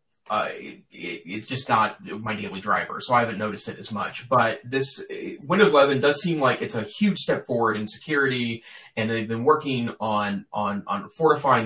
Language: English